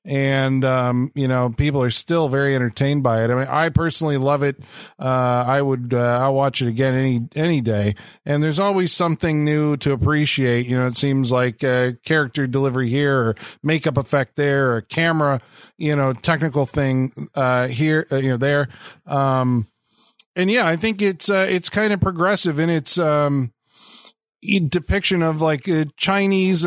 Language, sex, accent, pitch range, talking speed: English, male, American, 135-165 Hz, 180 wpm